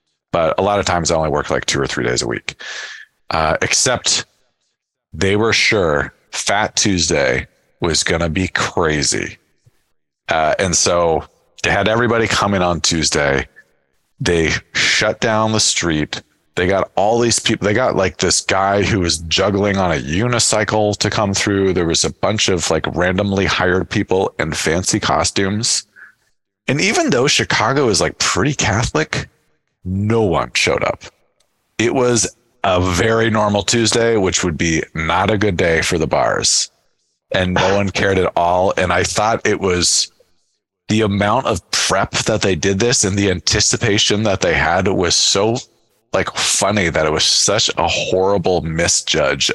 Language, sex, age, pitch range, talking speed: English, male, 40-59, 85-105 Hz, 165 wpm